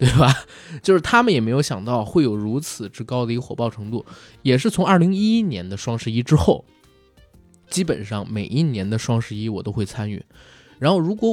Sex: male